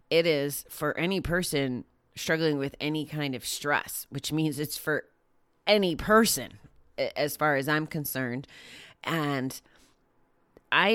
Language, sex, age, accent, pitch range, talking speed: English, female, 30-49, American, 130-160 Hz, 130 wpm